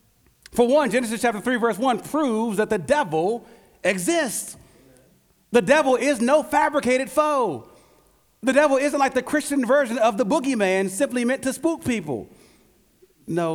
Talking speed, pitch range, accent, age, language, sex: 150 wpm, 180-260 Hz, American, 40-59, English, male